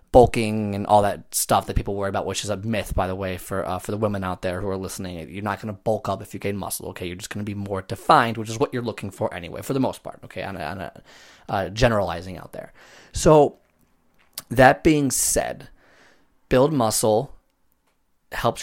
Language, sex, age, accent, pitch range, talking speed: English, male, 20-39, American, 100-125 Hz, 220 wpm